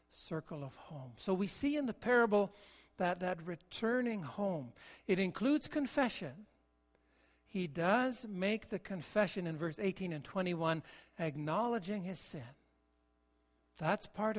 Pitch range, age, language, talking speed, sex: 150-200 Hz, 60-79, English, 130 wpm, male